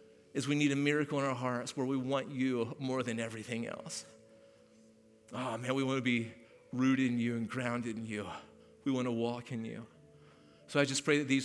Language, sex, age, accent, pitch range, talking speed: English, male, 40-59, American, 115-145 Hz, 215 wpm